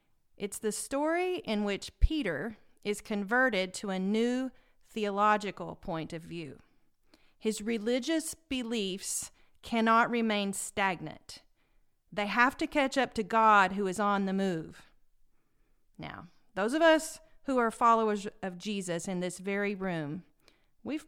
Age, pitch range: 40-59, 190-240 Hz